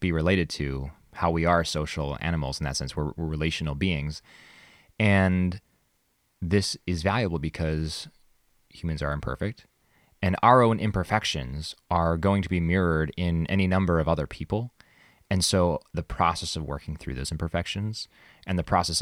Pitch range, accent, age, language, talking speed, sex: 75-90 Hz, American, 20-39, English, 160 wpm, male